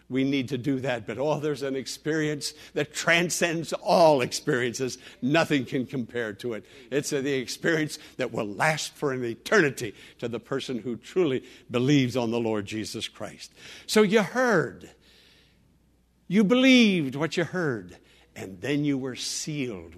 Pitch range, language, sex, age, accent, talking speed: 125-170 Hz, English, male, 60-79, American, 155 wpm